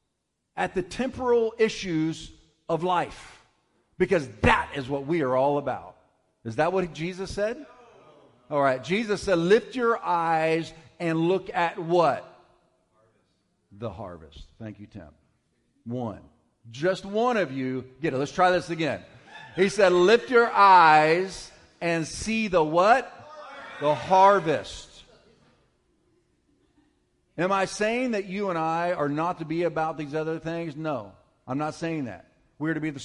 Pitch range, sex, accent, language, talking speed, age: 135-185 Hz, male, American, English, 145 wpm, 50-69